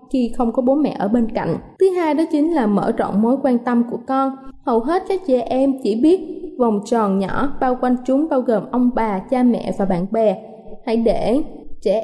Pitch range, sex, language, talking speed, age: 230-285 Hz, female, Vietnamese, 225 wpm, 20-39